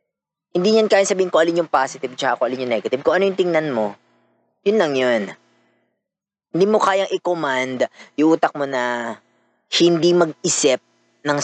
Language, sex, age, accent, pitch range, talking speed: Filipino, female, 20-39, native, 120-195 Hz, 170 wpm